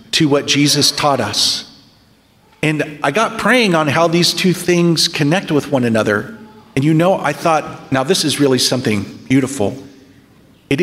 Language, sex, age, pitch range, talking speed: English, male, 40-59, 140-205 Hz, 165 wpm